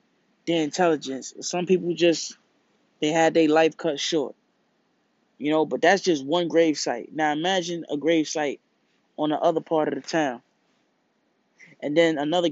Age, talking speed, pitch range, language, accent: 20-39, 165 wpm, 150-180 Hz, English, American